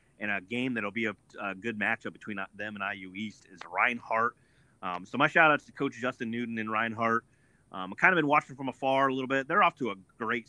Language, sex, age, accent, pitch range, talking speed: English, male, 30-49, American, 100-120 Hz, 245 wpm